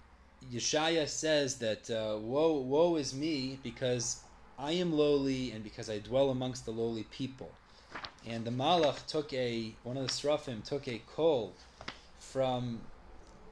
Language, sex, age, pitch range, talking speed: English, male, 30-49, 110-135 Hz, 145 wpm